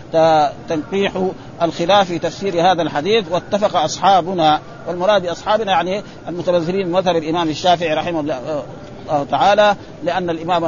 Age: 50-69